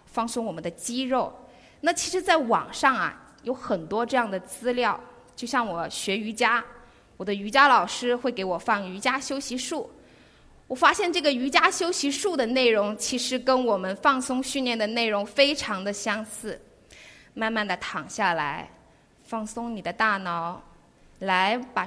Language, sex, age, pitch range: Chinese, female, 20-39, 200-260 Hz